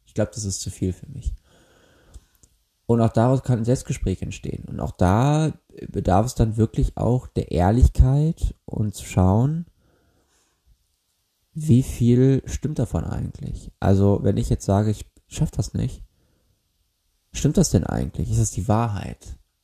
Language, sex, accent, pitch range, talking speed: German, male, German, 85-115 Hz, 155 wpm